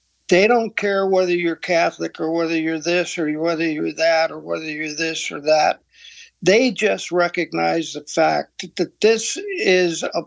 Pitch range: 160-205 Hz